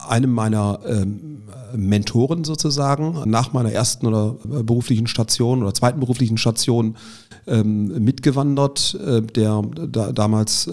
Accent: German